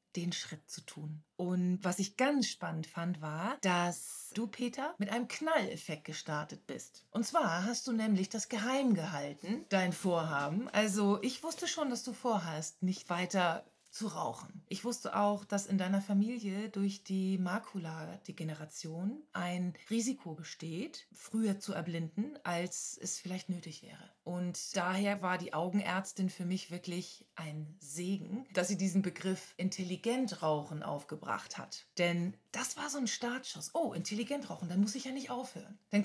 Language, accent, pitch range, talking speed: German, German, 175-230 Hz, 160 wpm